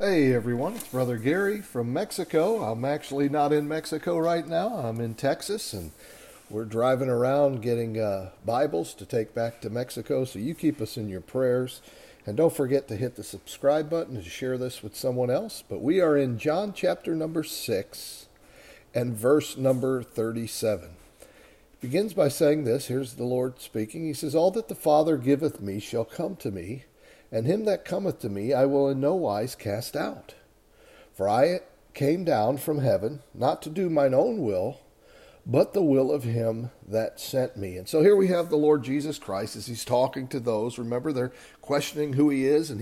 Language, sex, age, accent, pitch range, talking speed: English, male, 50-69, American, 115-155 Hz, 190 wpm